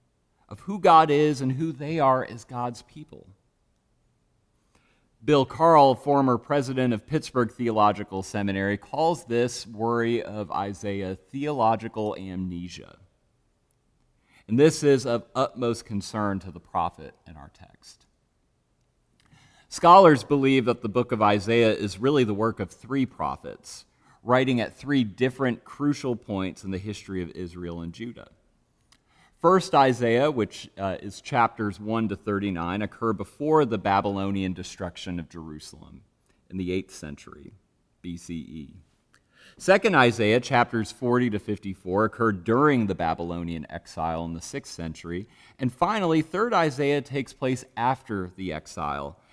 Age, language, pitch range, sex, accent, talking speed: 40-59, English, 95-130 Hz, male, American, 135 wpm